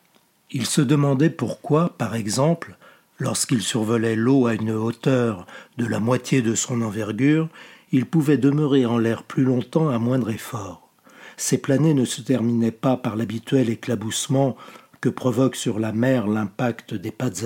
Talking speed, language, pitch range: 155 wpm, French, 120-150 Hz